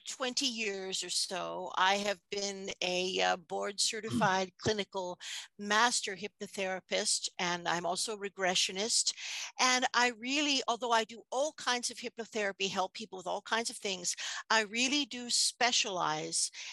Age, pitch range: 50-69, 185-225 Hz